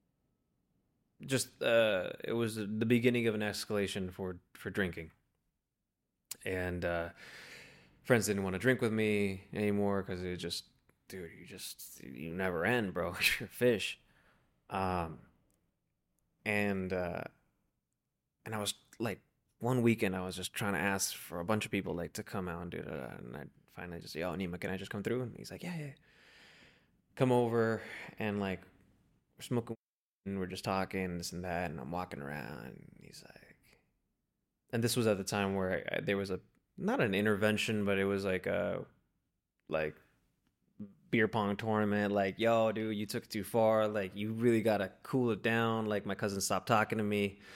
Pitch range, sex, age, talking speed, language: 95-115 Hz, male, 20-39, 180 wpm, English